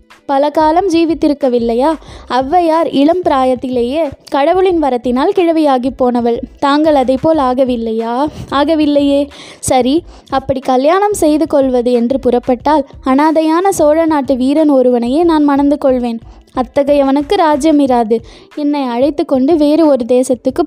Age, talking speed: 20-39, 105 wpm